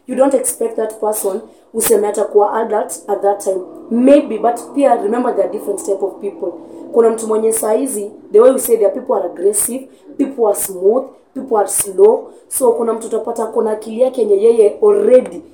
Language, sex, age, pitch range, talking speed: English, female, 30-49, 210-305 Hz, 165 wpm